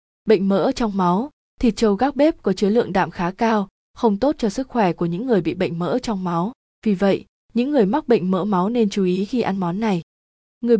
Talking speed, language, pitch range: 240 wpm, Vietnamese, 195-235 Hz